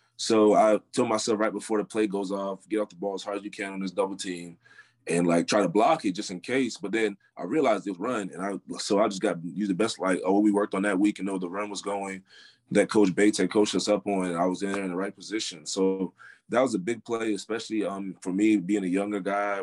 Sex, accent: male, American